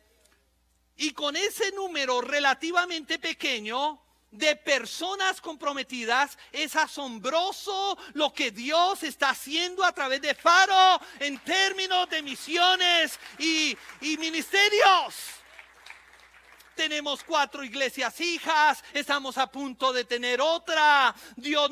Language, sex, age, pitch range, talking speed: Spanish, male, 50-69, 200-290 Hz, 105 wpm